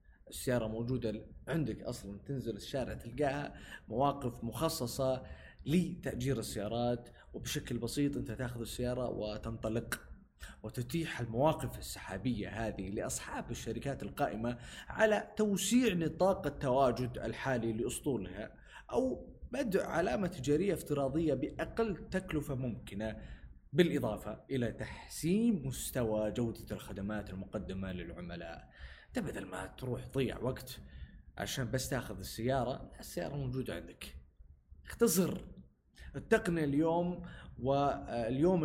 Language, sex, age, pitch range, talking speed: Arabic, male, 20-39, 110-145 Hz, 95 wpm